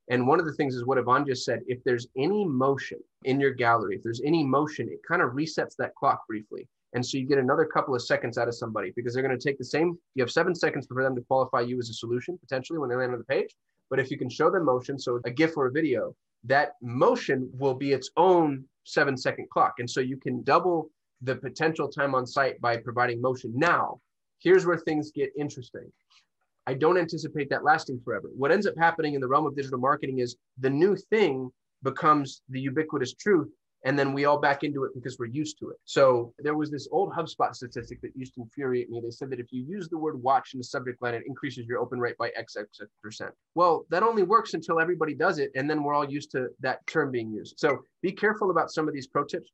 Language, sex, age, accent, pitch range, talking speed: English, male, 30-49, American, 125-150 Hz, 245 wpm